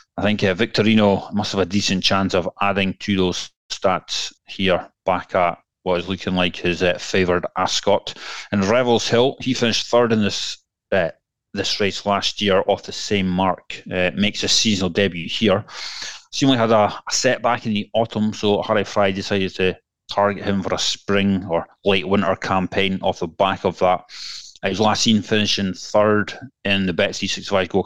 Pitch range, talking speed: 95-105 Hz, 185 wpm